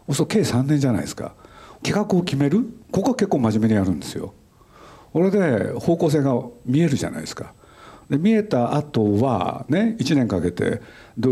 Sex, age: male, 60-79